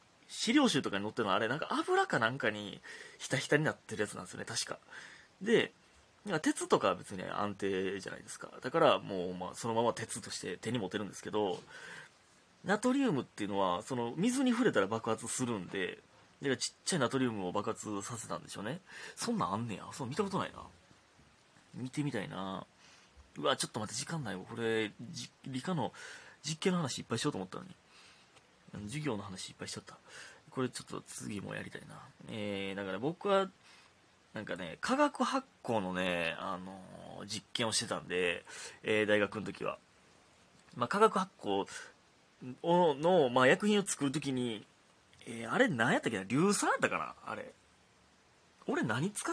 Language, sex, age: Japanese, male, 30-49